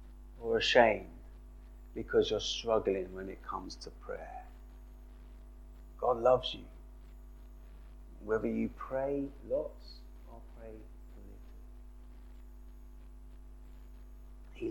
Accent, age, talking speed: British, 30-49, 85 wpm